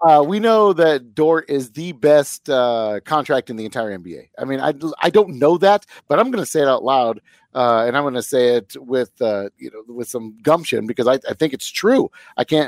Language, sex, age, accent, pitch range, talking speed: English, male, 40-59, American, 120-155 Hz, 240 wpm